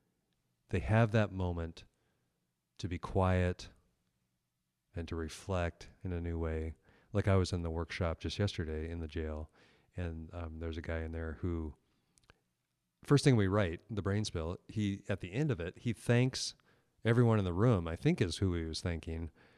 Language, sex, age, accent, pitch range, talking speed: English, male, 40-59, American, 80-100 Hz, 180 wpm